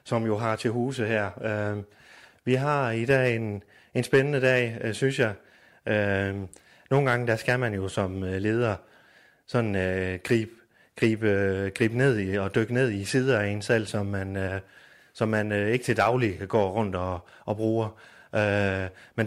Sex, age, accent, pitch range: male, 30-49, native, 100-125 Hz